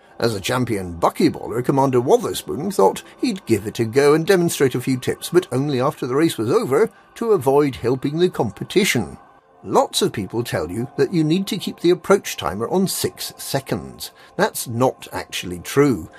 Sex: male